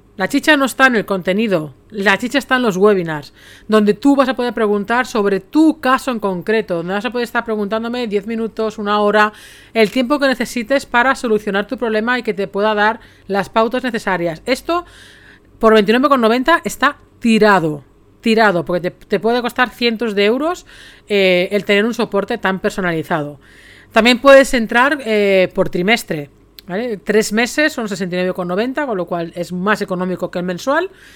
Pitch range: 195-240 Hz